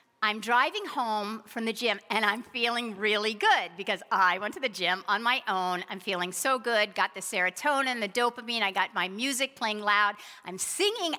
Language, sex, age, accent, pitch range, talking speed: English, female, 50-69, American, 205-250 Hz, 200 wpm